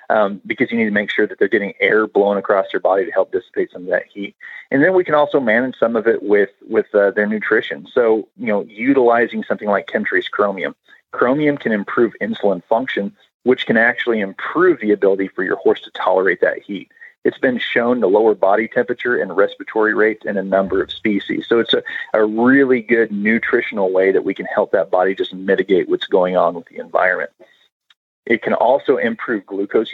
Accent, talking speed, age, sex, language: American, 210 wpm, 40-59, male, English